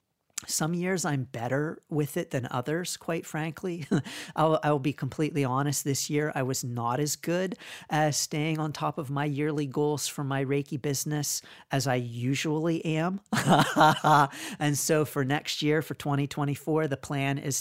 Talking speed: 165 wpm